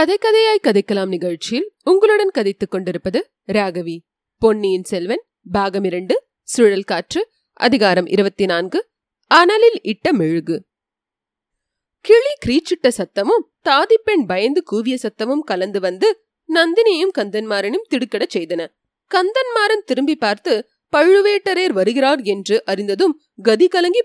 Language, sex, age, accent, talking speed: Tamil, female, 30-49, native, 100 wpm